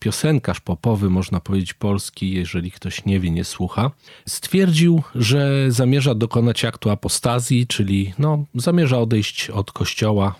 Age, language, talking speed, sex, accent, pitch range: 40-59, Polish, 125 wpm, male, native, 100-135 Hz